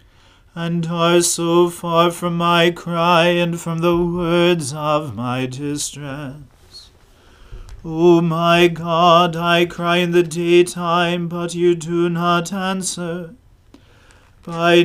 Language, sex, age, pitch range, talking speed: English, male, 40-59, 135-175 Hz, 115 wpm